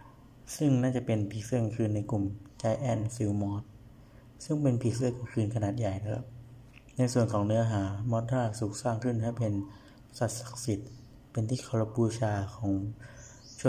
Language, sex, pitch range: Thai, male, 105-120 Hz